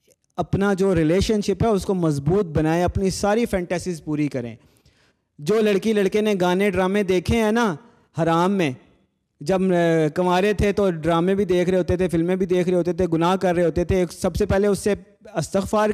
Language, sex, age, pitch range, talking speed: Urdu, male, 20-39, 165-200 Hz, 195 wpm